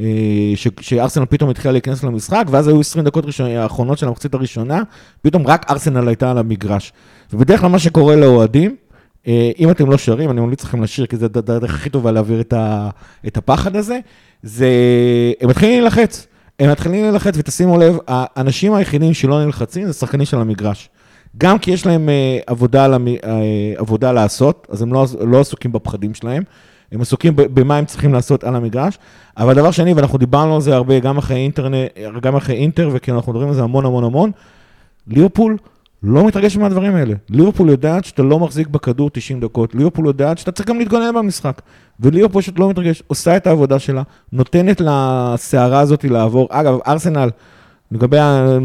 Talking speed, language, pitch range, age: 170 wpm, Hebrew, 120-155 Hz, 30-49